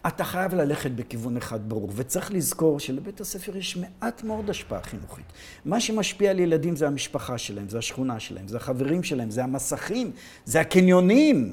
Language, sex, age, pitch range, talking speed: Hebrew, male, 50-69, 155-215 Hz, 165 wpm